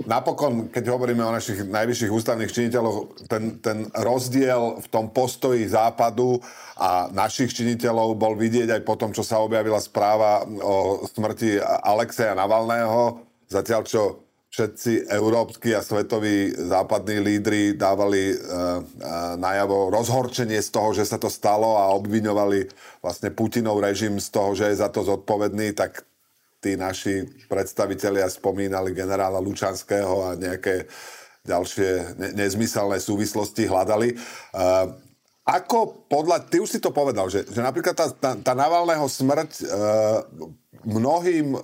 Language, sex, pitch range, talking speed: Slovak, male, 100-125 Hz, 130 wpm